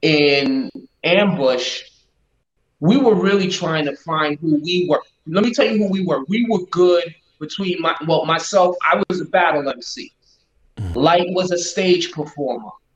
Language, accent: English, American